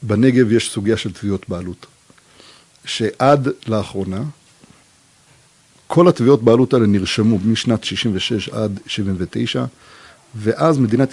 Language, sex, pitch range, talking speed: Hebrew, male, 105-140 Hz, 115 wpm